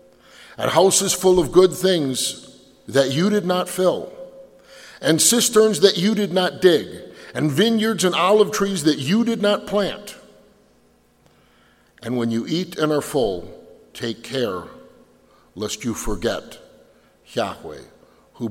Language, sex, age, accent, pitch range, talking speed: English, male, 50-69, American, 110-160 Hz, 135 wpm